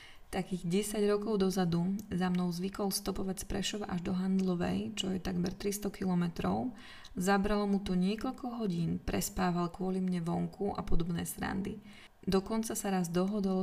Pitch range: 180-205 Hz